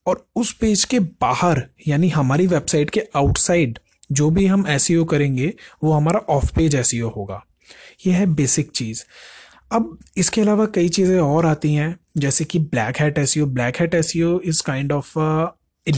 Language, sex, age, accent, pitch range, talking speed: Hindi, male, 20-39, native, 140-175 Hz, 175 wpm